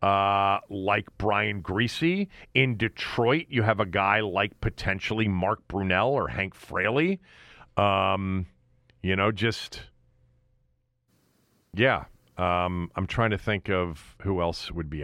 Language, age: English, 40-59